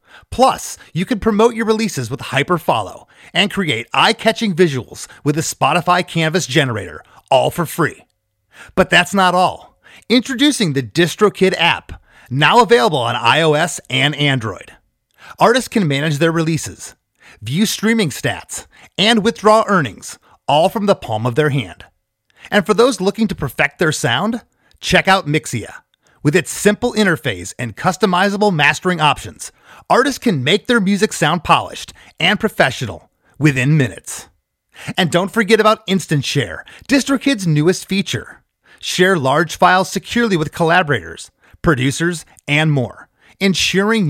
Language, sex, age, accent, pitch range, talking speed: English, male, 30-49, American, 145-215 Hz, 135 wpm